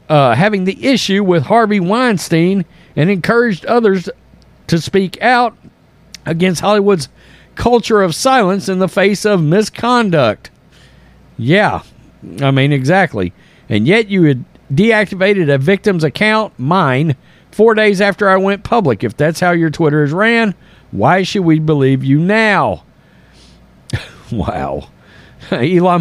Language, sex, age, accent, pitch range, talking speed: English, male, 50-69, American, 155-210 Hz, 130 wpm